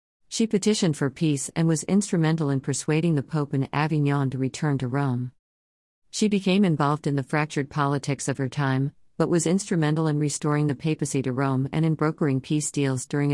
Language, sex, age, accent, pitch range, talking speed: Malayalam, female, 50-69, American, 135-160 Hz, 190 wpm